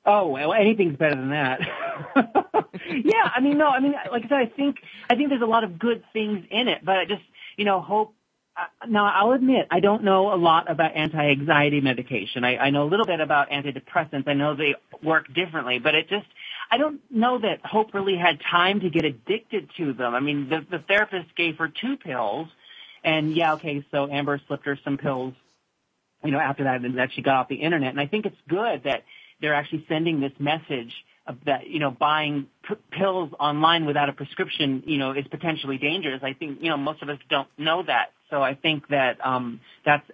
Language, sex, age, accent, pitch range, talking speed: English, male, 40-59, American, 145-215 Hz, 215 wpm